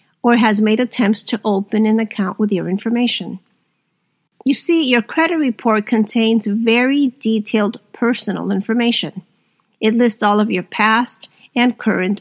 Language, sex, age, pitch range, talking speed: English, female, 50-69, 210-260 Hz, 145 wpm